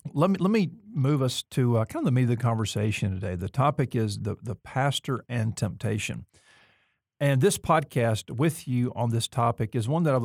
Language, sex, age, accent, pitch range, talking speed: English, male, 50-69, American, 115-130 Hz, 205 wpm